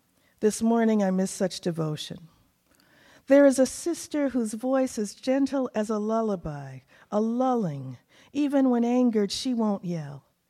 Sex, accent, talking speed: female, American, 145 wpm